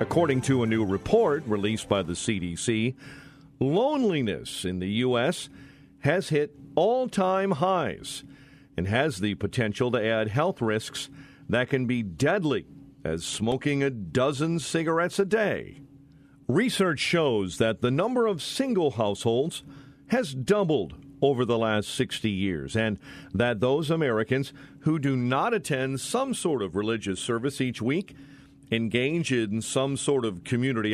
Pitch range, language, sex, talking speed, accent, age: 115-145 Hz, English, male, 140 wpm, American, 50-69